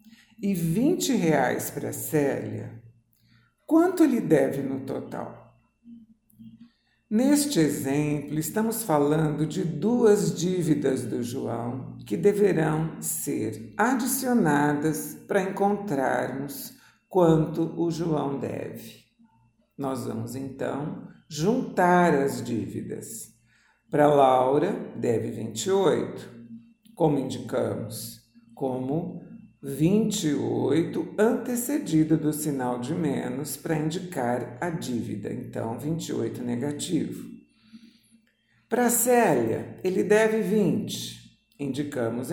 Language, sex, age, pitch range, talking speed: Portuguese, male, 50-69, 130-205 Hz, 90 wpm